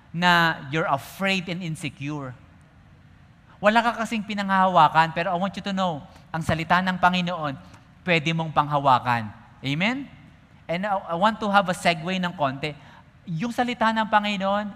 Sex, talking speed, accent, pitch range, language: male, 145 wpm, Filipino, 135-190 Hz, English